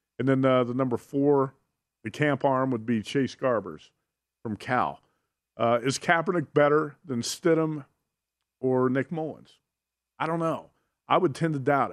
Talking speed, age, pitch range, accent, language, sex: 160 wpm, 50-69, 125-155 Hz, American, English, male